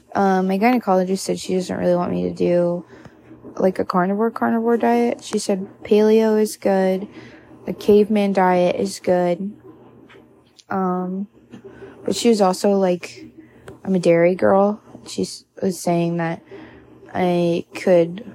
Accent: American